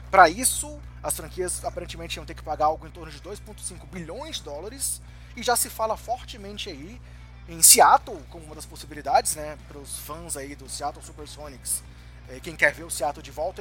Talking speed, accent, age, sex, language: 195 wpm, Brazilian, 20-39, male, Portuguese